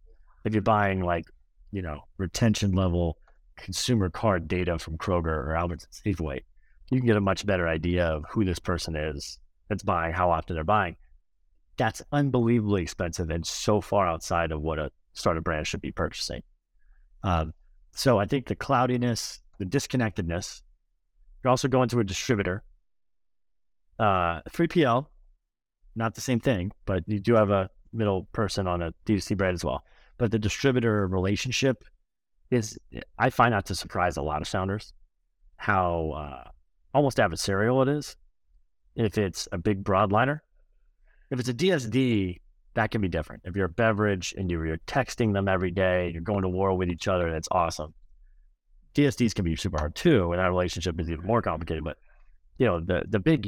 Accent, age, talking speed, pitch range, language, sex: American, 30-49, 170 wpm, 80-110 Hz, English, male